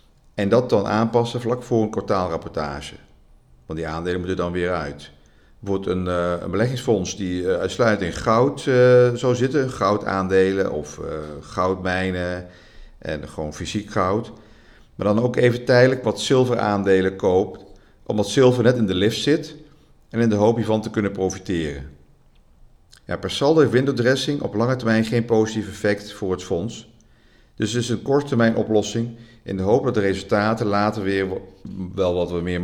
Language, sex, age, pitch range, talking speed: Dutch, male, 50-69, 90-120 Hz, 170 wpm